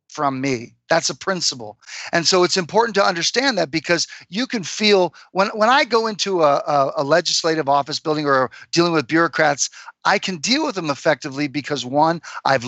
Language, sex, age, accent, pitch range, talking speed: English, male, 40-59, American, 140-185 Hz, 185 wpm